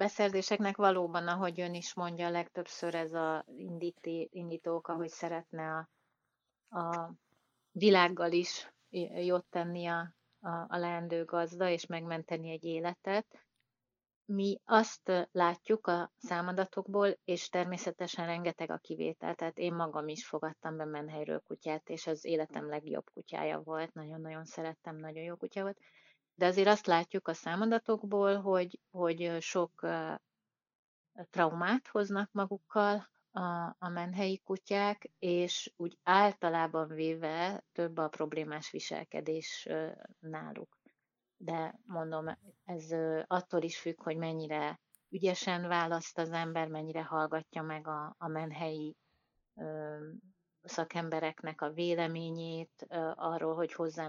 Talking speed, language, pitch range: 120 wpm, Hungarian, 160-180 Hz